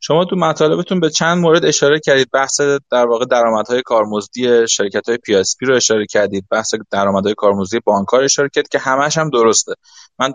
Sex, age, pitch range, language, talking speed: male, 20-39, 115-150 Hz, Persian, 180 wpm